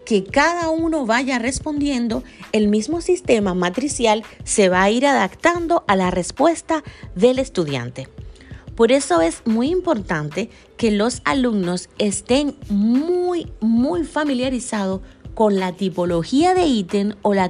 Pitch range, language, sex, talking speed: 180-260 Hz, Spanish, female, 125 wpm